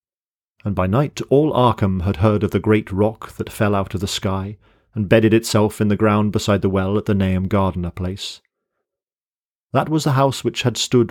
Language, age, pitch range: English, 40-59, 95-115 Hz